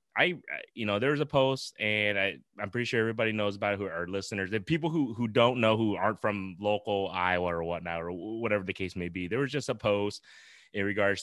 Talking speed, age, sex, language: 245 wpm, 20-39, male, English